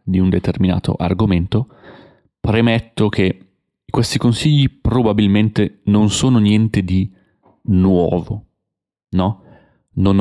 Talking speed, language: 95 wpm, Italian